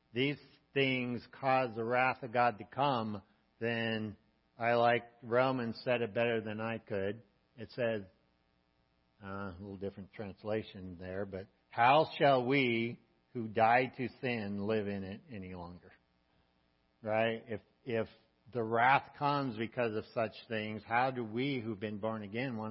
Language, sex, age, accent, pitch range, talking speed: English, male, 60-79, American, 95-115 Hz, 155 wpm